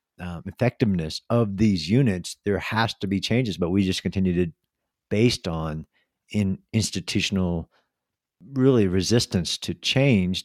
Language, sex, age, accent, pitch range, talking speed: English, male, 50-69, American, 90-110 Hz, 130 wpm